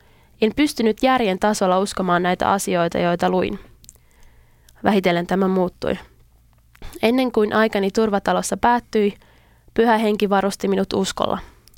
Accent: native